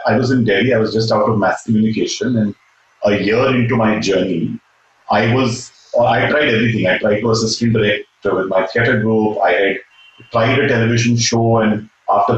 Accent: Indian